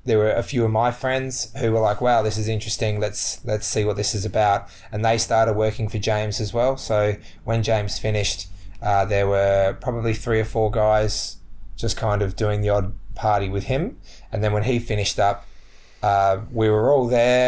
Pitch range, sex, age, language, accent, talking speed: 100-110 Hz, male, 20-39, English, Australian, 210 wpm